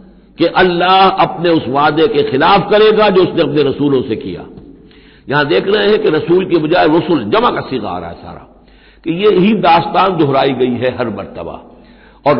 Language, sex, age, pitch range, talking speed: Hindi, male, 60-79, 130-165 Hz, 190 wpm